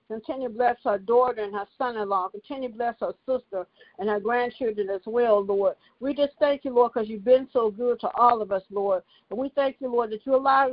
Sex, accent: female, American